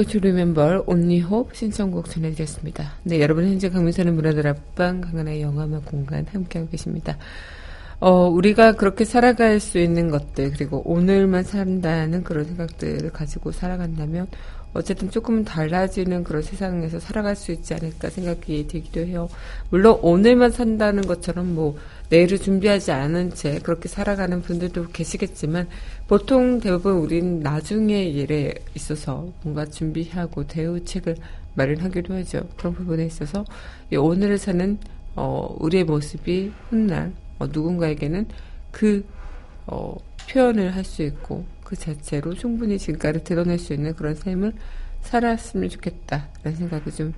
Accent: native